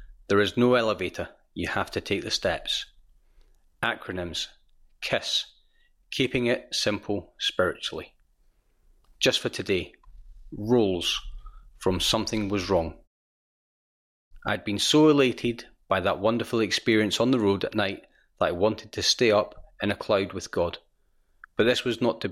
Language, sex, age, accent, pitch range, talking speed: English, male, 30-49, British, 95-120 Hz, 145 wpm